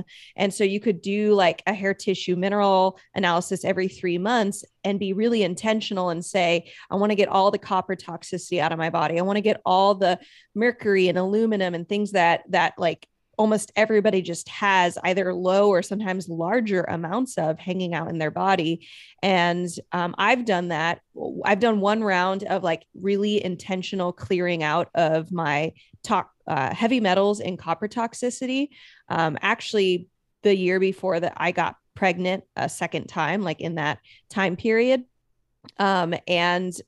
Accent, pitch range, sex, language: American, 180-225 Hz, female, English